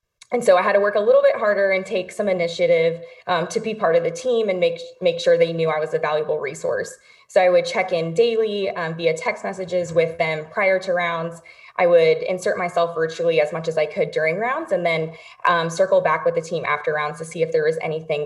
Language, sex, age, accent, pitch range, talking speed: English, female, 20-39, American, 165-225 Hz, 245 wpm